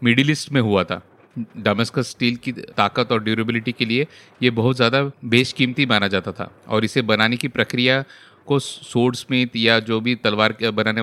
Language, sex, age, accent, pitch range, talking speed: Hindi, male, 30-49, native, 110-135 Hz, 175 wpm